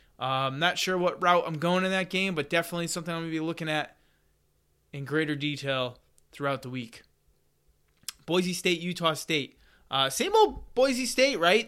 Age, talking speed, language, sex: 20-39, 185 wpm, English, male